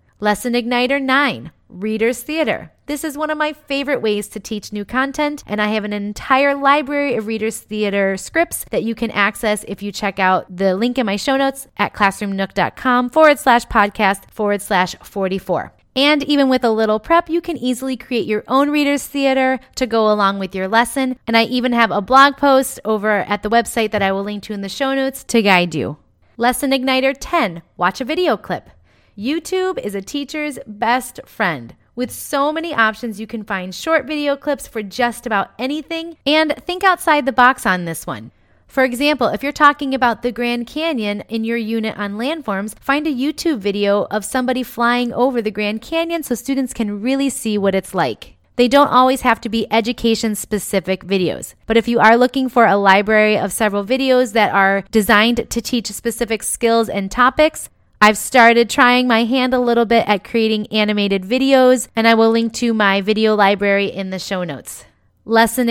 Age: 30-49